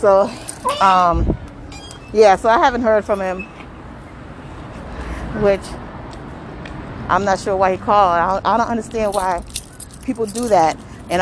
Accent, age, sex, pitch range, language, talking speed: American, 30-49, female, 165-210 Hz, English, 130 wpm